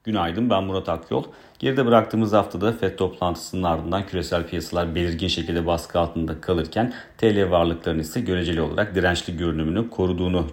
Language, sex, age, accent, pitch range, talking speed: Turkish, male, 40-59, native, 80-95 Hz, 140 wpm